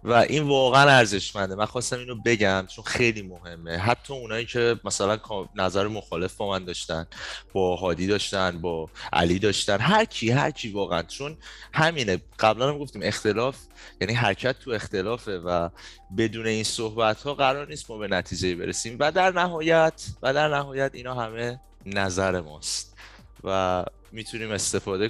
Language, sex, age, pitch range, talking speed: Persian, male, 20-39, 100-125 Hz, 150 wpm